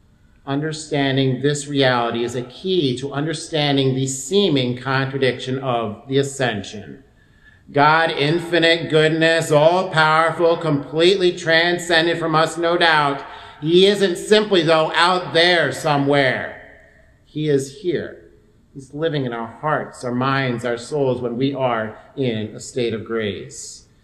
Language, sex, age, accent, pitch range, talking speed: English, male, 50-69, American, 130-165 Hz, 125 wpm